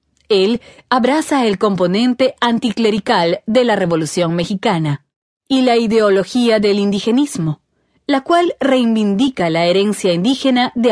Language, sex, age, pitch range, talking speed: Spanish, female, 30-49, 180-260 Hz, 115 wpm